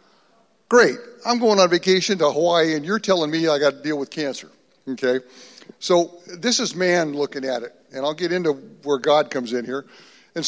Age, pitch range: 60-79, 145-185 Hz